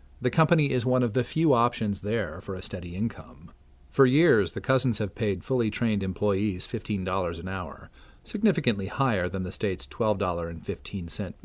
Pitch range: 85-120 Hz